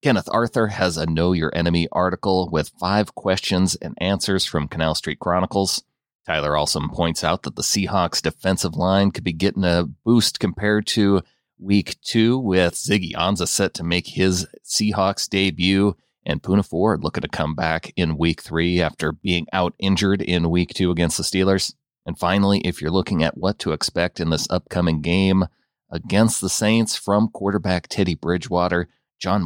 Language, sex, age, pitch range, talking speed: English, male, 30-49, 85-100 Hz, 175 wpm